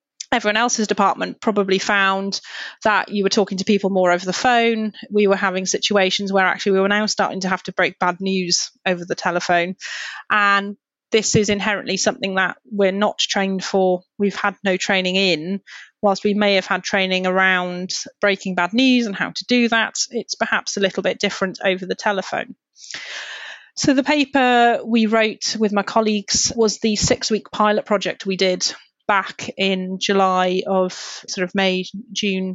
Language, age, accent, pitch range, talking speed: English, 30-49, British, 190-220 Hz, 175 wpm